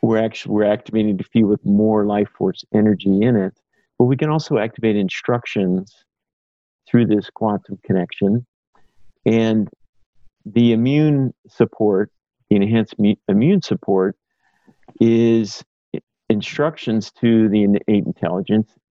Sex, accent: male, American